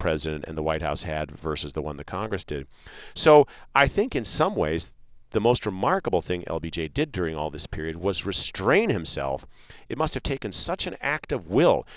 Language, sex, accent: English, male, American